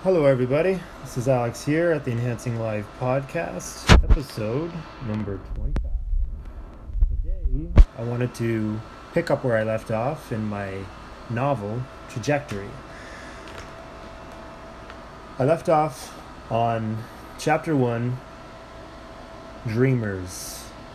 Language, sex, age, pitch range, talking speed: English, male, 20-39, 105-130 Hz, 100 wpm